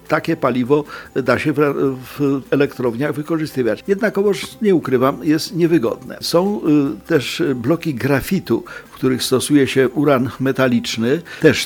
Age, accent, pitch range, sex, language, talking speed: 50-69, native, 125-160 Hz, male, Polish, 130 wpm